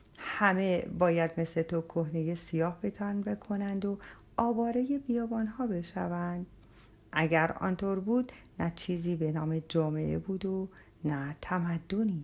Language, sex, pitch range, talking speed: Persian, female, 155-220 Hz, 125 wpm